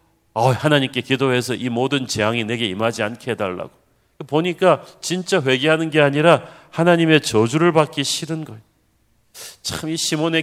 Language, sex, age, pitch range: Korean, male, 40-59, 110-140 Hz